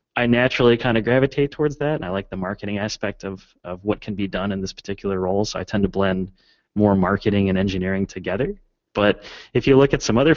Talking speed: 230 wpm